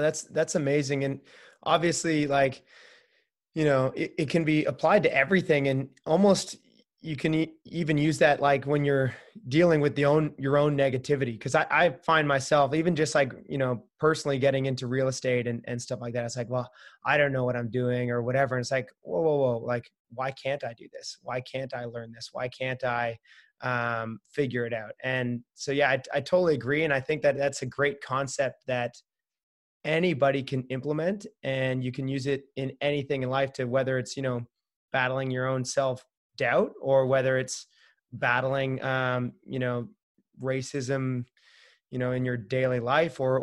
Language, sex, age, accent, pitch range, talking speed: English, male, 20-39, American, 125-145 Hz, 195 wpm